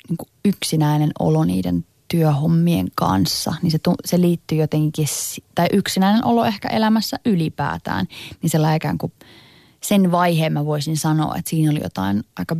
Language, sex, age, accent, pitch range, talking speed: Finnish, female, 20-39, native, 150-175 Hz, 155 wpm